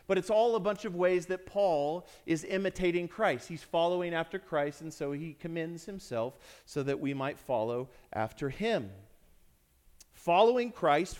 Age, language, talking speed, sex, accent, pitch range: 40-59, English, 160 wpm, male, American, 135-185 Hz